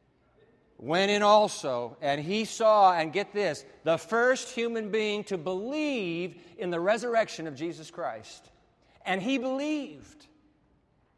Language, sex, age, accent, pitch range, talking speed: English, male, 50-69, American, 145-210 Hz, 130 wpm